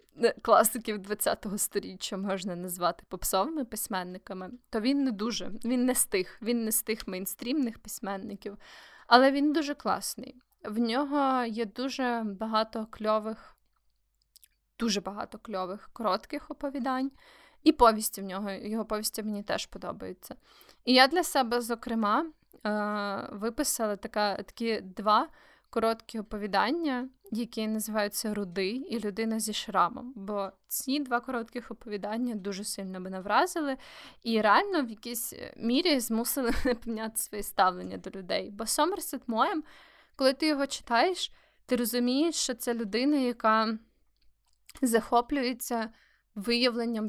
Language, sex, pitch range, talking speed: Ukrainian, female, 205-255 Hz, 125 wpm